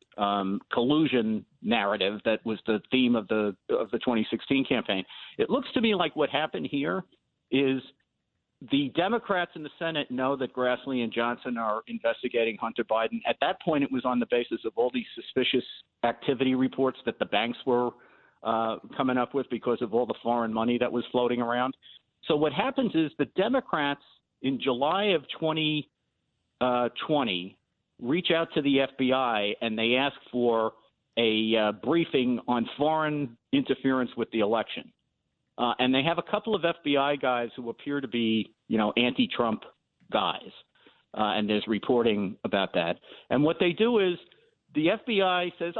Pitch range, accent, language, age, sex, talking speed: 115-155 Hz, American, English, 50-69, male, 170 wpm